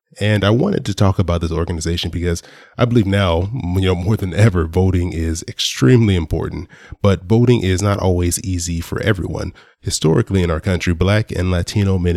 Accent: American